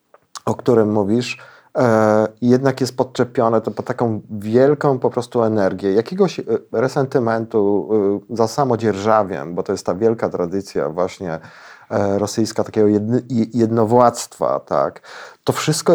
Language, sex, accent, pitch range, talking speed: Polish, male, native, 105-130 Hz, 115 wpm